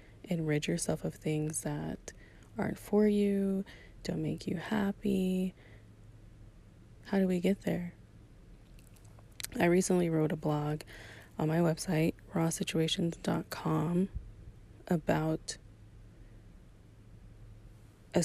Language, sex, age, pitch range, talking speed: English, female, 20-39, 110-165 Hz, 95 wpm